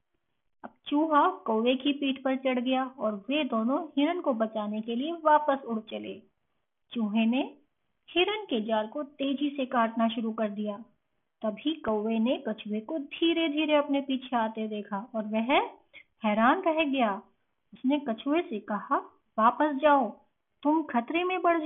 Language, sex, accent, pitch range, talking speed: Hindi, female, native, 225-305 Hz, 155 wpm